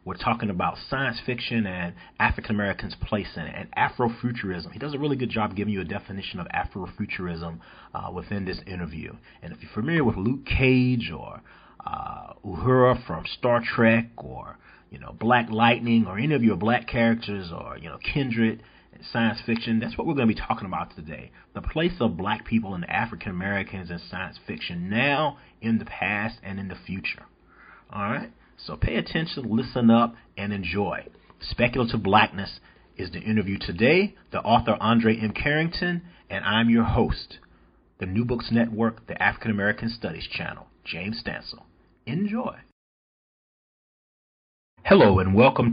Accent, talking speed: American, 165 wpm